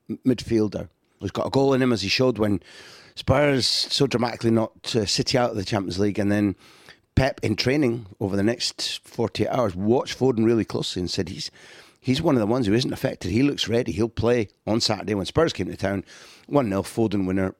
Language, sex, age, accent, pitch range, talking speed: English, male, 30-49, British, 95-125 Hz, 210 wpm